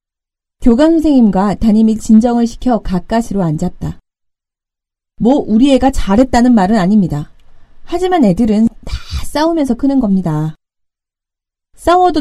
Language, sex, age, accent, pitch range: Korean, female, 30-49, native, 175-255 Hz